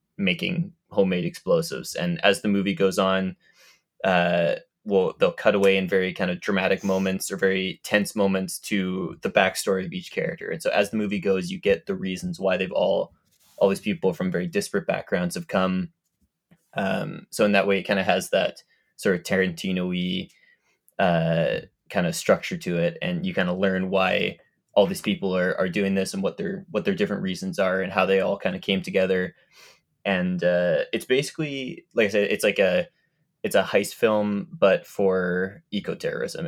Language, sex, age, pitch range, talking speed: English, male, 20-39, 95-160 Hz, 190 wpm